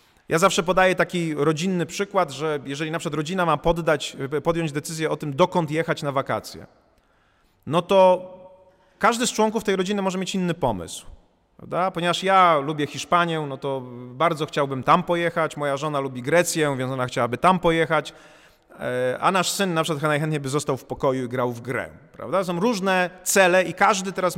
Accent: native